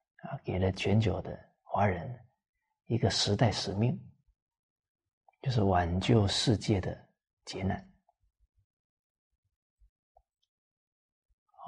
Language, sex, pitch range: Chinese, male, 95-120 Hz